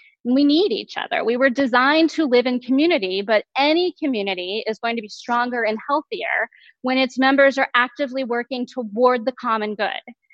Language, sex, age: English, female, 20-39